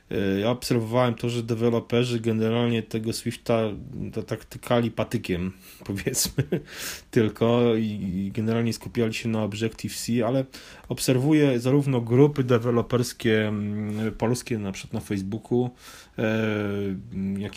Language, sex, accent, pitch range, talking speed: Polish, male, native, 105-125 Hz, 100 wpm